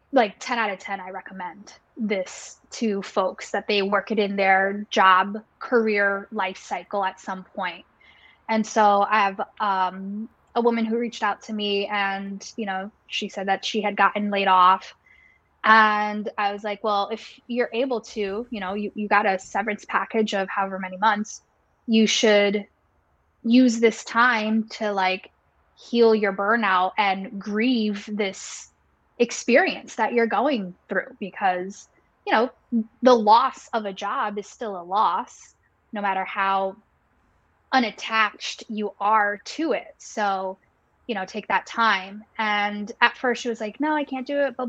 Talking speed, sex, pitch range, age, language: 165 wpm, female, 195-230 Hz, 10-29, English